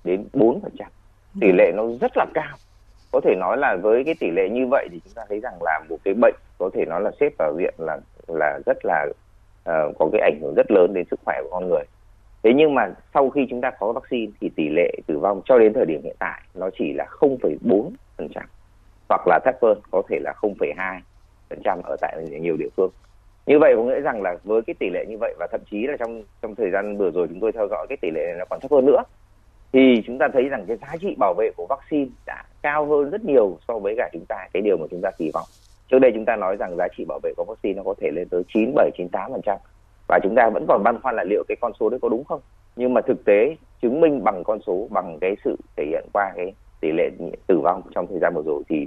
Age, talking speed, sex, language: 30-49, 265 wpm, male, Vietnamese